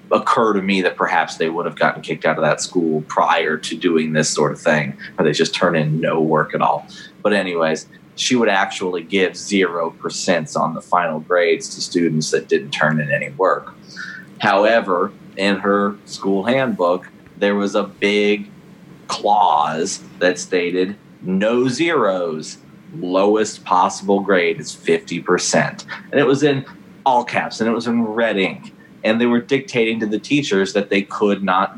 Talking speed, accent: 175 wpm, American